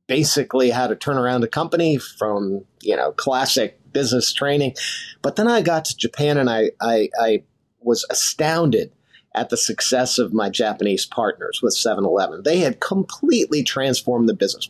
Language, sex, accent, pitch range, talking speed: English, male, American, 120-150 Hz, 165 wpm